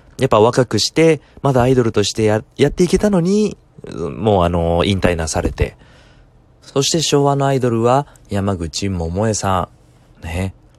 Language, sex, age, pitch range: Japanese, male, 20-39, 95-135 Hz